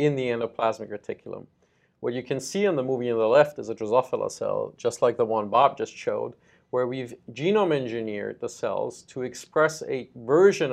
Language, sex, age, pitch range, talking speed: English, male, 40-59, 115-160 Hz, 195 wpm